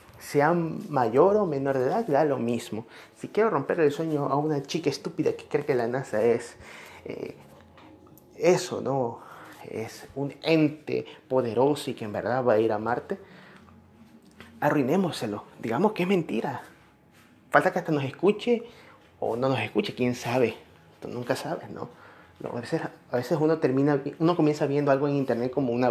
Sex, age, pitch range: male, 30-49, 130-165 Hz